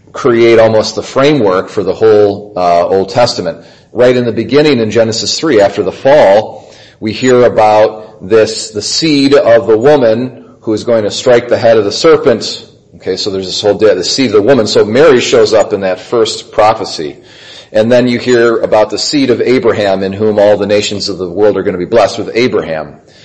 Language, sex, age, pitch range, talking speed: English, male, 40-59, 105-125 Hz, 210 wpm